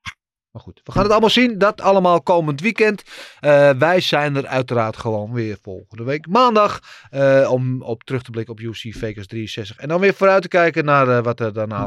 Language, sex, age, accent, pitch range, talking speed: Dutch, male, 30-49, Dutch, 120-160 Hz, 210 wpm